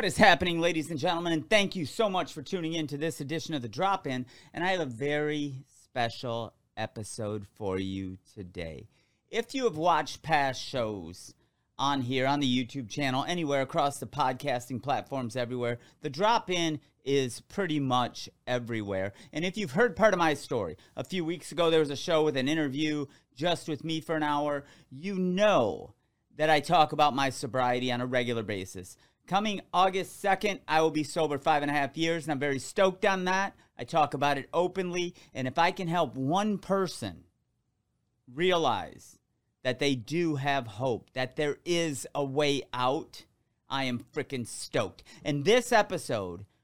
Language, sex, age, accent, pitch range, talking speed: English, male, 30-49, American, 125-170 Hz, 180 wpm